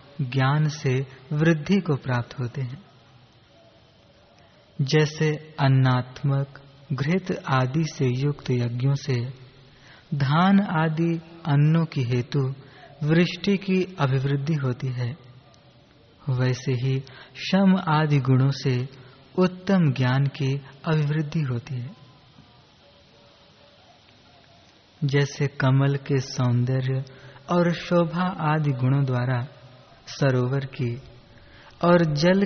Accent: native